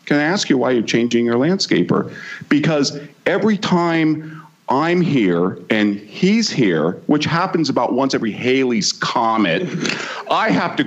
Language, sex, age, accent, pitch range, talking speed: English, male, 50-69, American, 95-155 Hz, 150 wpm